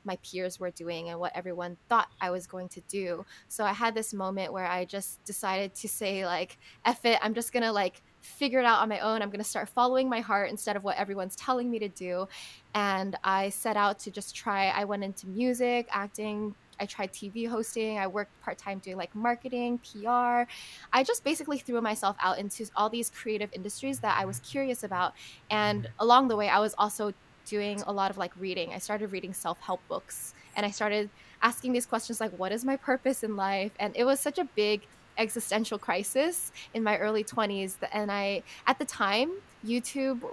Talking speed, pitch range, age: 210 wpm, 195-235 Hz, 10-29